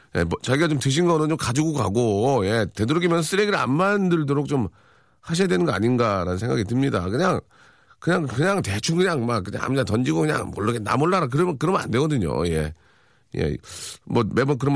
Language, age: Korean, 40-59